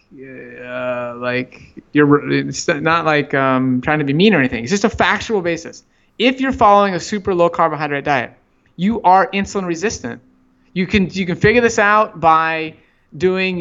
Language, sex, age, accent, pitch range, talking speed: English, male, 20-39, American, 145-190 Hz, 170 wpm